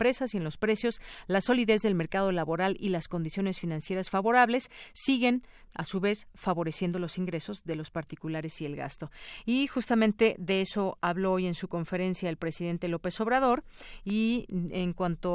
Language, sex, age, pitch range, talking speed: Spanish, female, 40-59, 175-225 Hz, 170 wpm